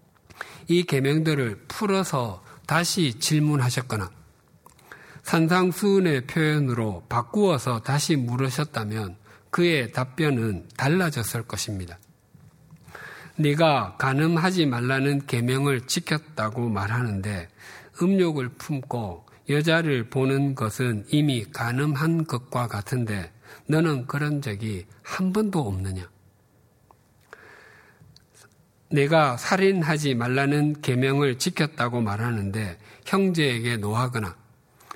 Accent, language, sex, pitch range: native, Korean, male, 115-155 Hz